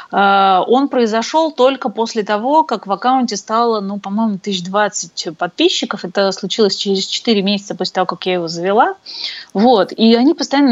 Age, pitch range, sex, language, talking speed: 30-49, 190-245 Hz, female, Russian, 155 wpm